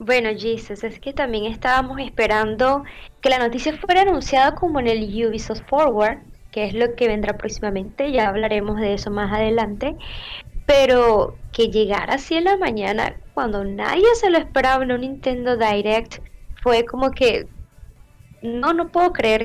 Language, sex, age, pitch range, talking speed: Spanish, female, 10-29, 220-285 Hz, 160 wpm